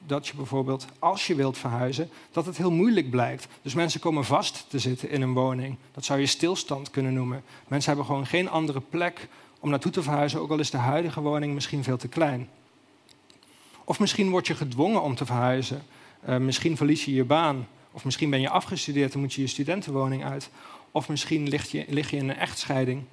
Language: Dutch